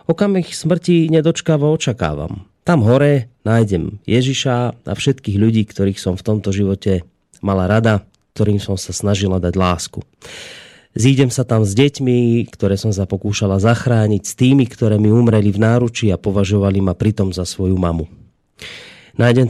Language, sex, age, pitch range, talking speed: Slovak, male, 30-49, 100-120 Hz, 150 wpm